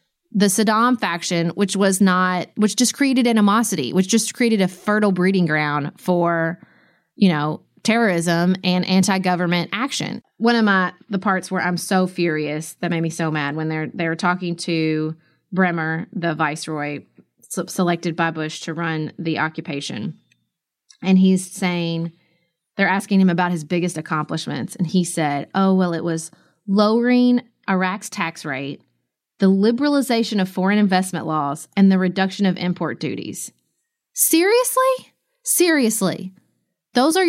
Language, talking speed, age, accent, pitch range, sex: English, 145 wpm, 20-39, American, 170-225 Hz, female